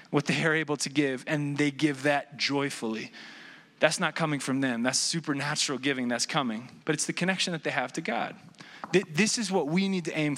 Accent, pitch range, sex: American, 150-185 Hz, male